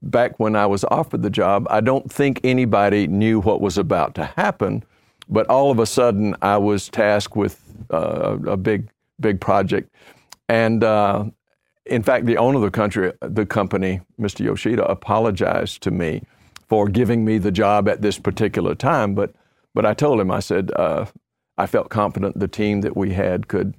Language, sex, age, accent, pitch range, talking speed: English, male, 50-69, American, 100-110 Hz, 185 wpm